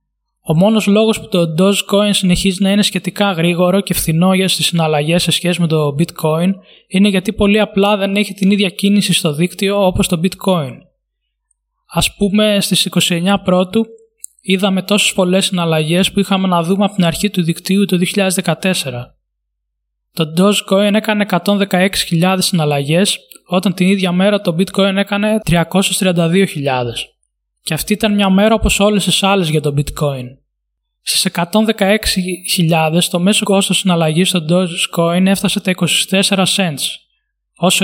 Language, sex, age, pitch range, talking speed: Greek, male, 20-39, 170-200 Hz, 145 wpm